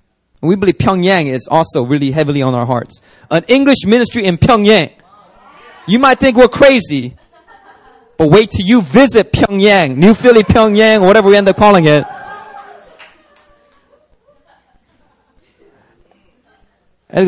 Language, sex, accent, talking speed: English, male, American, 125 wpm